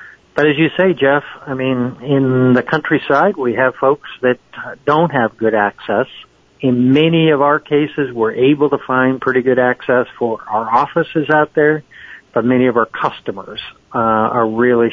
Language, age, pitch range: English, 50-69, 115-135 Hz